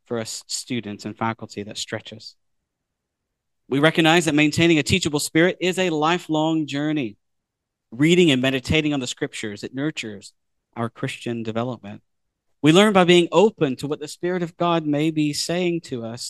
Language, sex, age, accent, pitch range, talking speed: English, male, 40-59, American, 110-150 Hz, 165 wpm